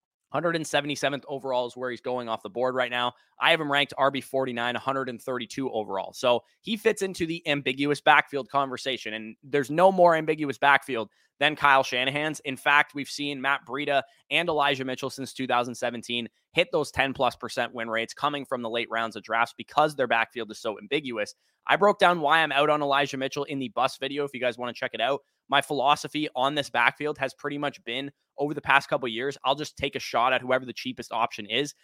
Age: 20-39